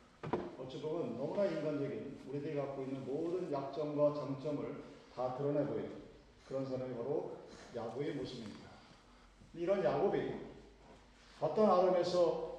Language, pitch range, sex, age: Korean, 140-175 Hz, male, 40-59